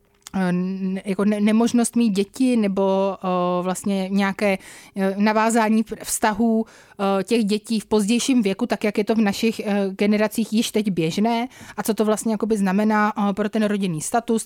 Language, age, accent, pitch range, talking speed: Czech, 20-39, native, 200-225 Hz, 145 wpm